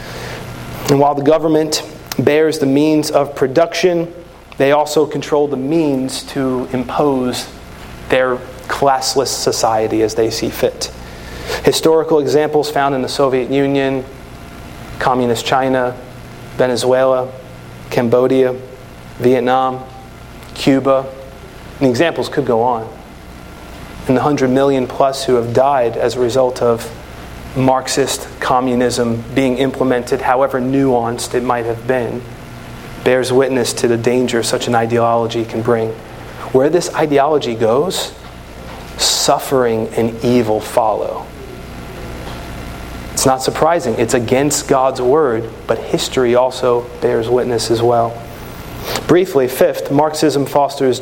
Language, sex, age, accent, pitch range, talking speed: English, male, 30-49, American, 115-140 Hz, 115 wpm